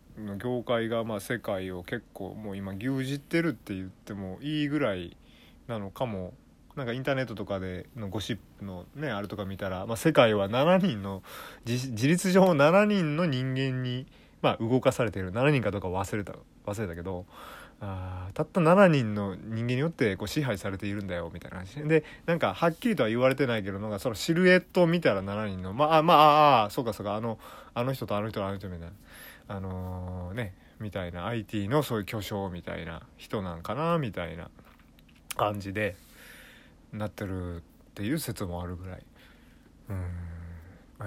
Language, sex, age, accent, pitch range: Japanese, male, 30-49, native, 95-135 Hz